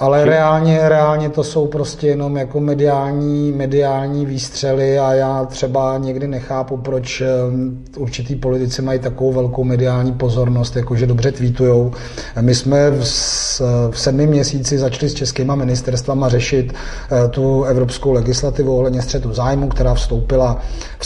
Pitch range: 125-140 Hz